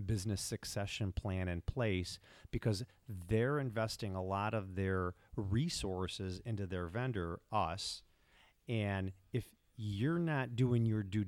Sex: male